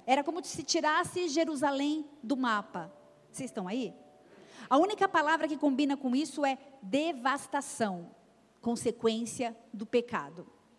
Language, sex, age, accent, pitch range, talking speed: Portuguese, female, 40-59, Brazilian, 210-275 Hz, 120 wpm